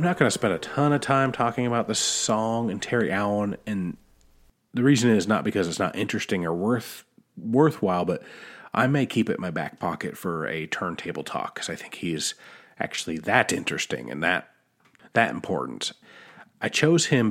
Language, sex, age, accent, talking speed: English, male, 30-49, American, 190 wpm